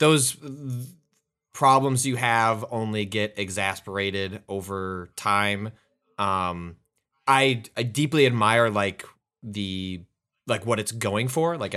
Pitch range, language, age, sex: 100-125 Hz, English, 20-39, male